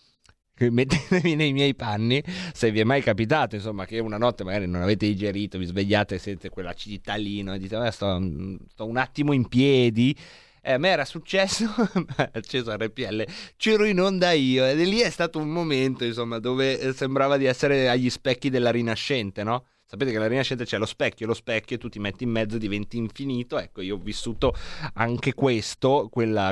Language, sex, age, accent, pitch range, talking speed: Italian, male, 30-49, native, 115-165 Hz, 190 wpm